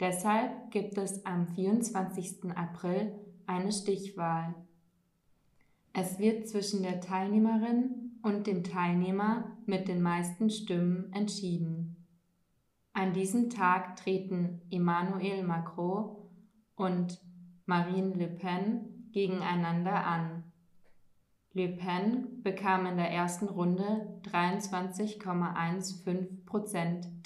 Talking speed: 90 wpm